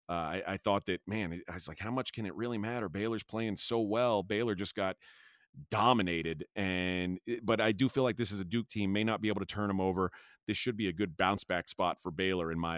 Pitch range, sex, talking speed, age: 100-120 Hz, male, 255 wpm, 30-49